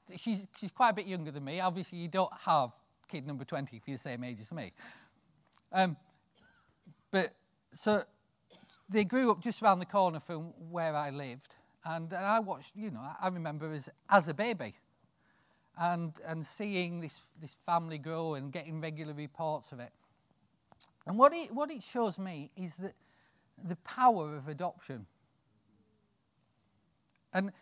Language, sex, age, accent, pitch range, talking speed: English, male, 40-59, British, 145-205 Hz, 160 wpm